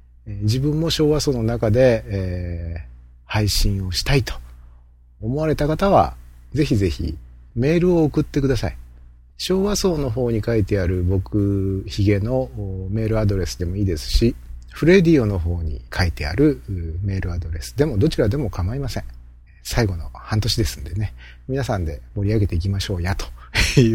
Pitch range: 80-125 Hz